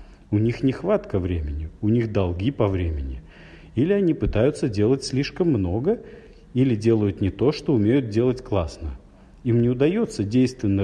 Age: 40-59